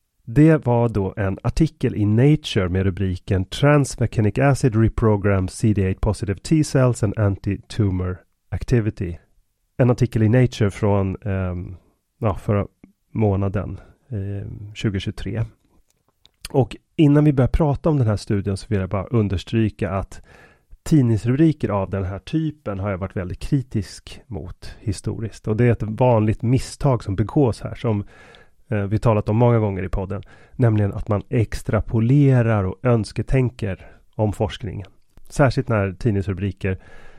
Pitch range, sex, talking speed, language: 95-120 Hz, male, 135 wpm, Swedish